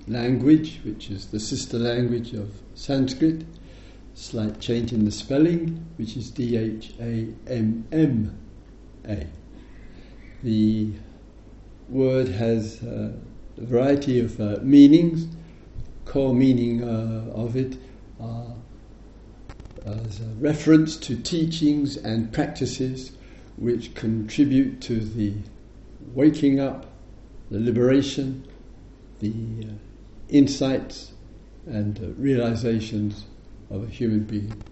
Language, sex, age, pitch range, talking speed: English, male, 60-79, 105-130 Hz, 105 wpm